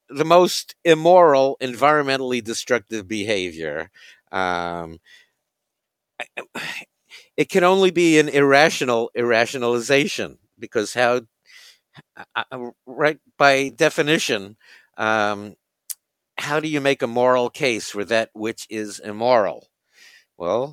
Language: English